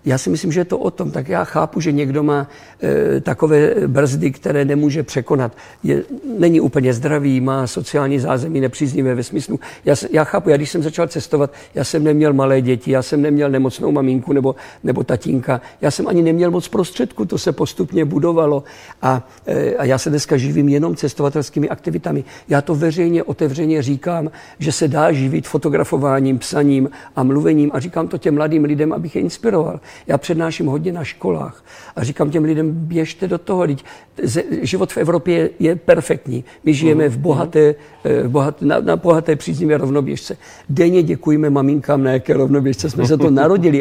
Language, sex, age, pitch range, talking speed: Czech, male, 50-69, 135-160 Hz, 180 wpm